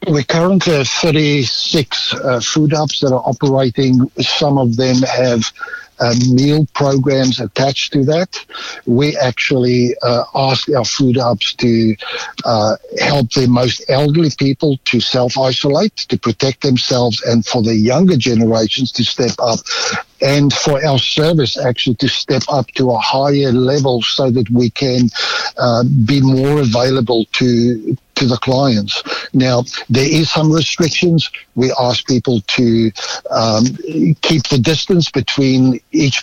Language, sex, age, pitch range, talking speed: English, male, 60-79, 125-140 Hz, 140 wpm